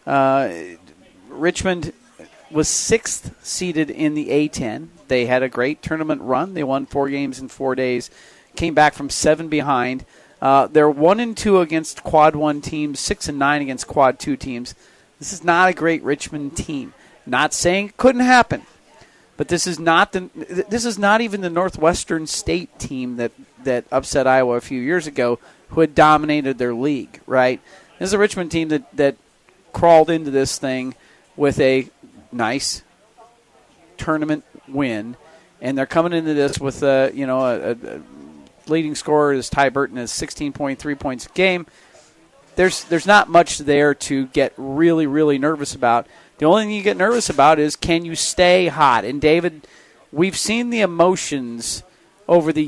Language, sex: English, male